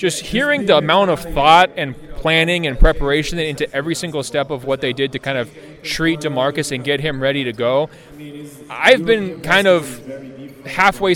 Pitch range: 135-160 Hz